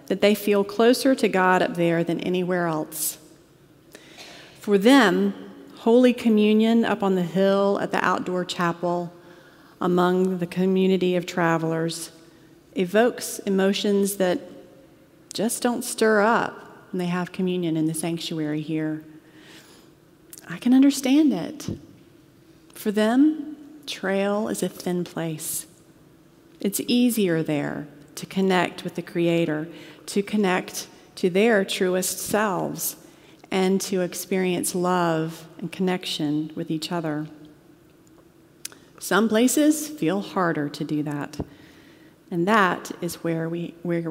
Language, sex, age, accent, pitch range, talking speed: English, female, 40-59, American, 160-195 Hz, 120 wpm